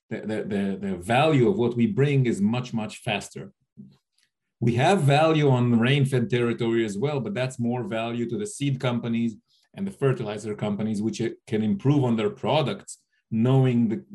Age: 40-59